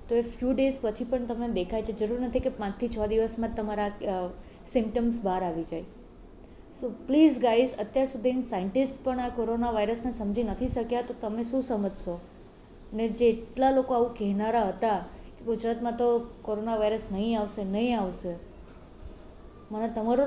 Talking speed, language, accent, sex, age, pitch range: 165 wpm, Gujarati, native, female, 20-39, 215-255 Hz